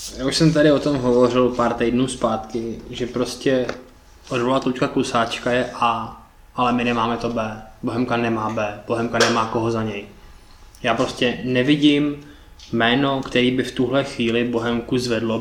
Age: 20-39